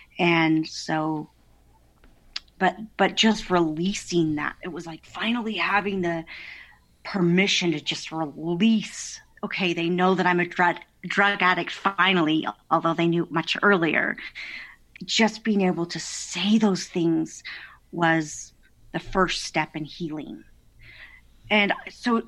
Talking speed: 130 wpm